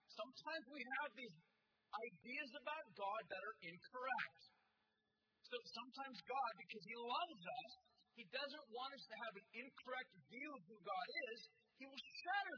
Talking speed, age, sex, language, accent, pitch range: 155 wpm, 40-59, male, English, American, 210-280 Hz